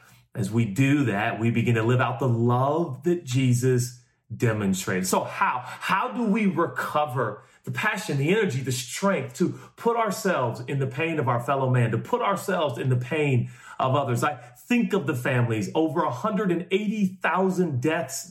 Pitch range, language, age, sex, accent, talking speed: 120-185 Hz, English, 40-59, male, American, 170 wpm